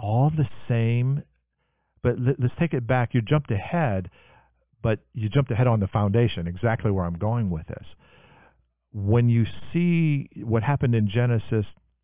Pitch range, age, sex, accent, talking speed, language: 90-115 Hz, 50-69, male, American, 155 wpm, English